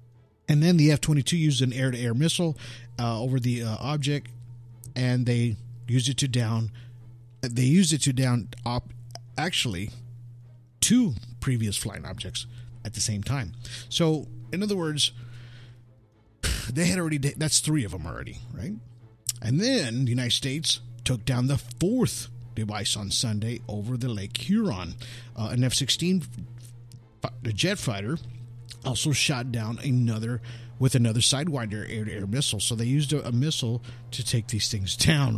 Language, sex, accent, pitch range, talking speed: English, male, American, 115-140 Hz, 150 wpm